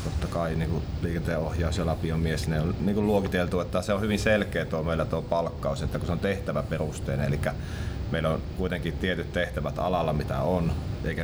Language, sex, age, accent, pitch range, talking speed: Finnish, male, 30-49, native, 75-90 Hz, 180 wpm